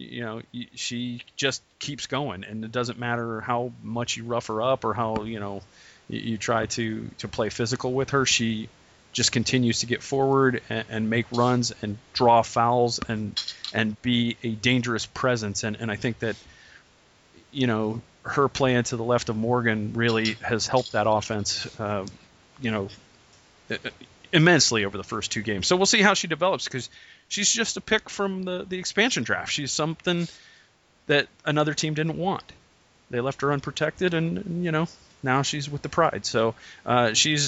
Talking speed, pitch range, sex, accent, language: 180 wpm, 110-145 Hz, male, American, English